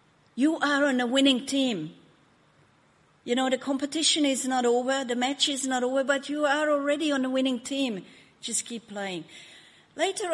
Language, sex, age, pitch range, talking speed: English, female, 50-69, 200-265 Hz, 175 wpm